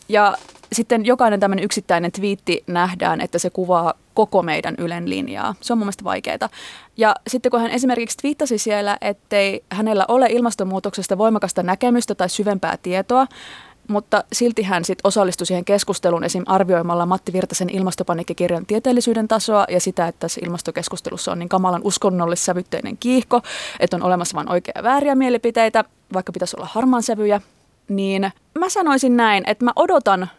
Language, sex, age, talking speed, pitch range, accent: Finnish, female, 20-39, 160 wpm, 180-225 Hz, native